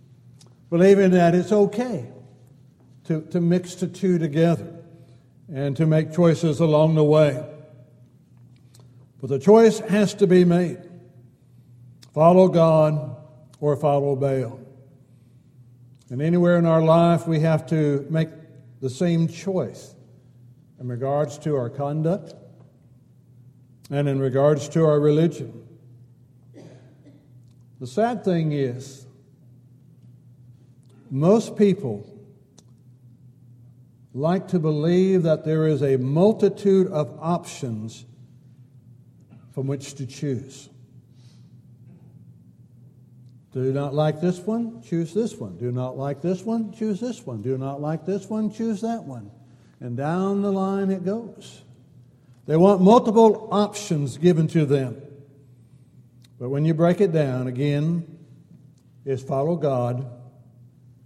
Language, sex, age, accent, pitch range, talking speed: English, male, 60-79, American, 125-170 Hz, 115 wpm